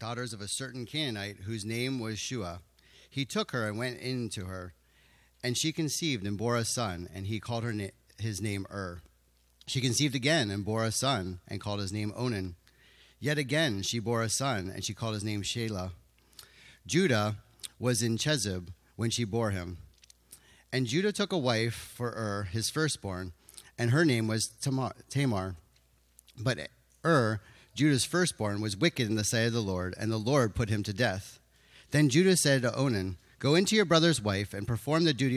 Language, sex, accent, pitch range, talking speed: English, male, American, 100-135 Hz, 190 wpm